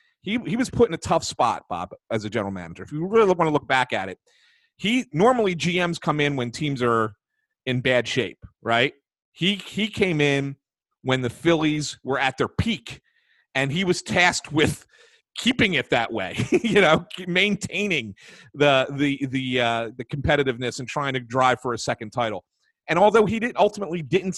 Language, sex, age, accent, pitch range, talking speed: English, male, 40-59, American, 135-195 Hz, 190 wpm